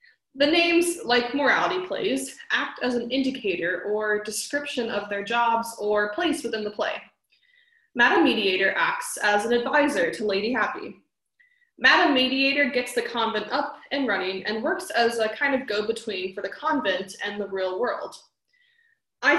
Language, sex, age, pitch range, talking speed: English, female, 20-39, 215-315 Hz, 160 wpm